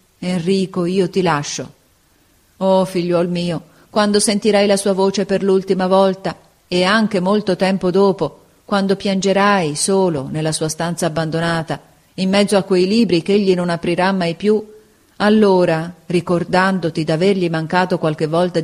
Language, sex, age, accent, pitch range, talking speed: Italian, female, 40-59, native, 160-210 Hz, 140 wpm